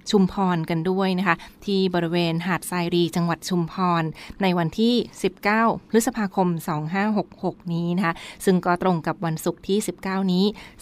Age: 20-39